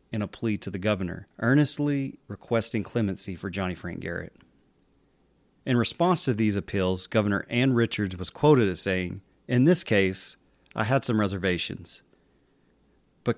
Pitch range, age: 95-115 Hz, 30-49